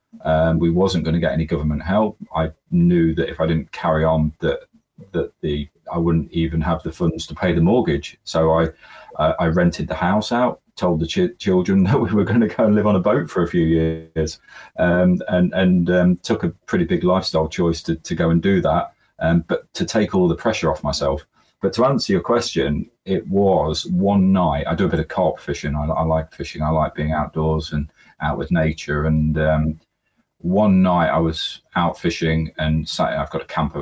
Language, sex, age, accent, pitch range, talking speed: English, male, 40-59, British, 75-90 Hz, 220 wpm